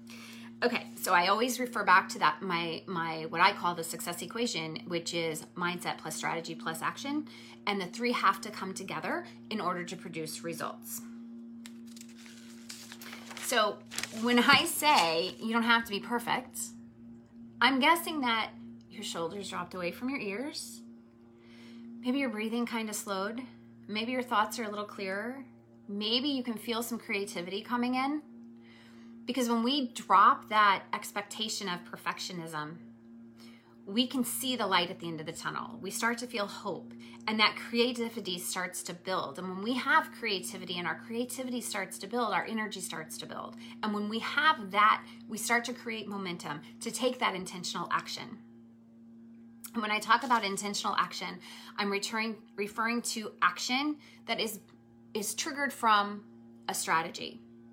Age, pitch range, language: 30-49, 160-235 Hz, English